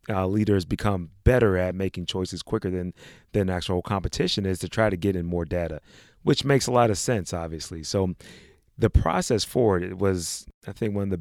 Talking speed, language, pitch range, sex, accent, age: 205 wpm, English, 90-110 Hz, male, American, 30-49